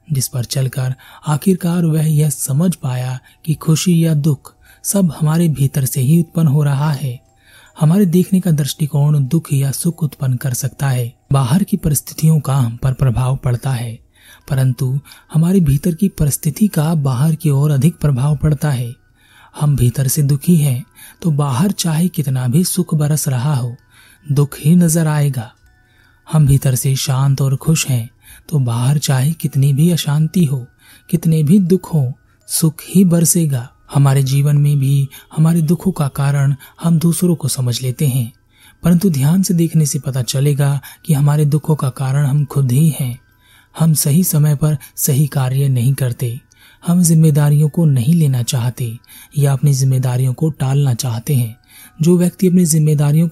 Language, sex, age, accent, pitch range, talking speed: Hindi, male, 30-49, native, 130-160 Hz, 170 wpm